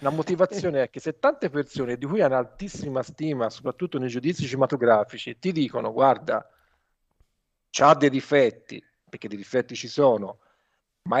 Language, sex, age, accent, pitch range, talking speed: Italian, male, 50-69, native, 120-150 Hz, 150 wpm